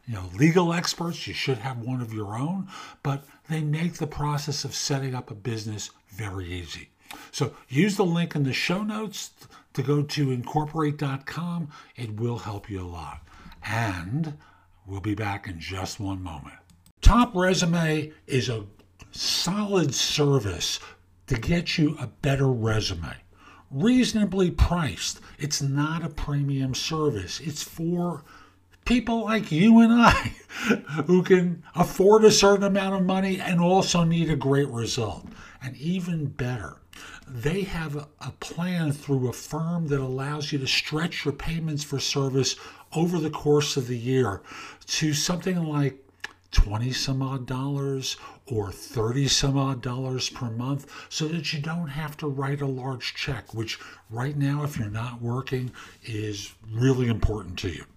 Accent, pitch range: American, 115-165 Hz